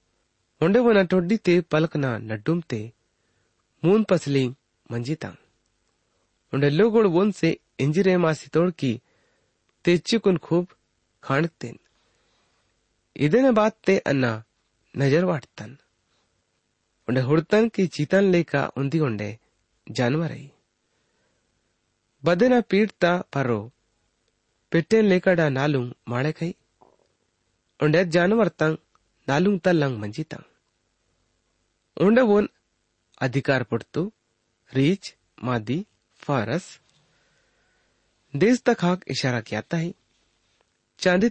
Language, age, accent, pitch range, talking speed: English, 30-49, Indian, 110-175 Hz, 75 wpm